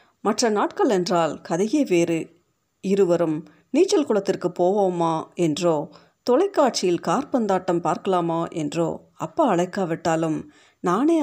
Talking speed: 90 wpm